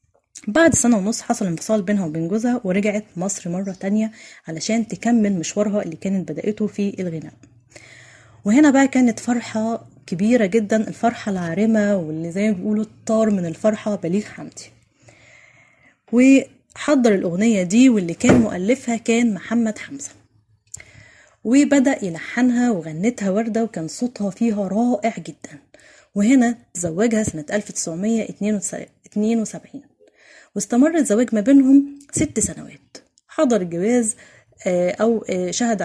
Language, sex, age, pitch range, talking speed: Arabic, female, 20-39, 185-235 Hz, 115 wpm